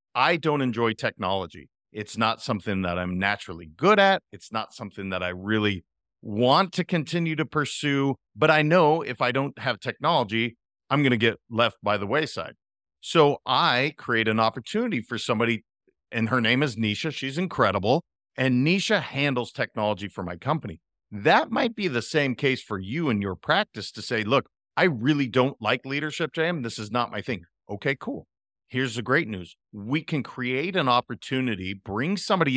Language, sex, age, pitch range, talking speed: English, male, 40-59, 110-155 Hz, 180 wpm